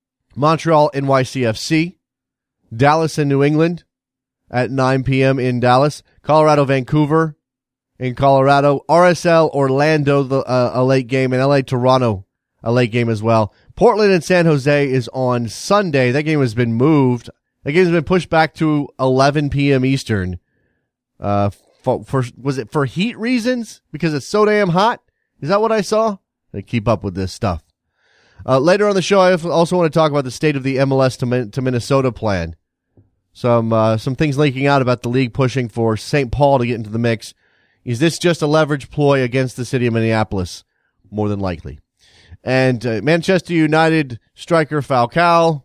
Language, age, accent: English, 30-49, American